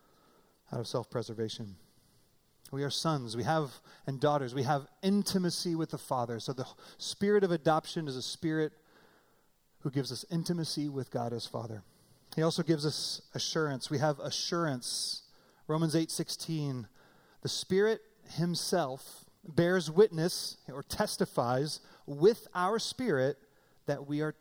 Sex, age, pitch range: male, 30-49, 135-170 Hz